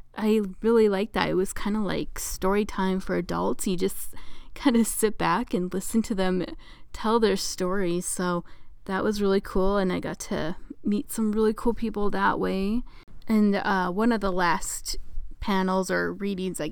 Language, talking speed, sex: English, 185 wpm, female